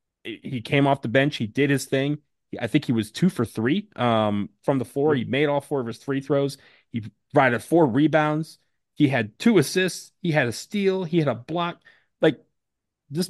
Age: 30-49